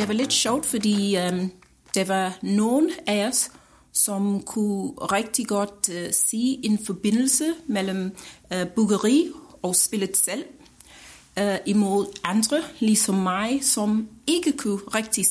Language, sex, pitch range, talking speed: Danish, female, 185-235 Hz, 135 wpm